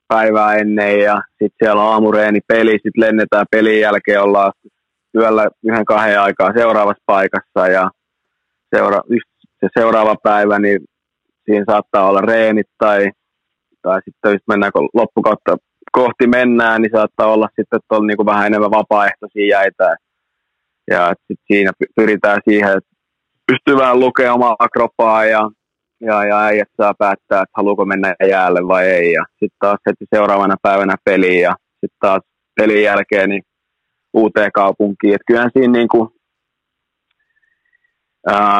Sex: male